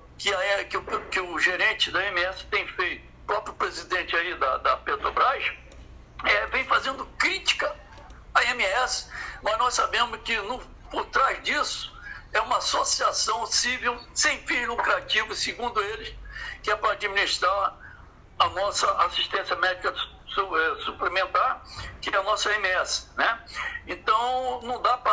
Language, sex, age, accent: Portuguese, male, 60-79, Brazilian